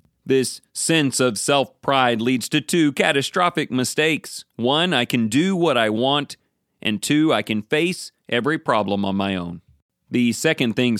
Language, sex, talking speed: English, male, 160 wpm